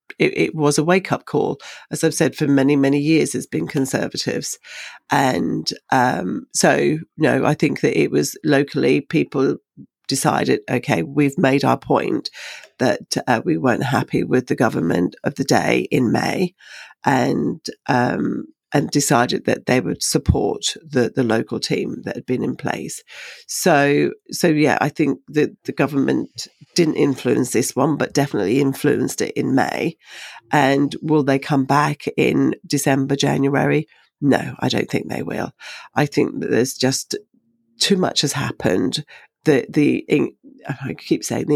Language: English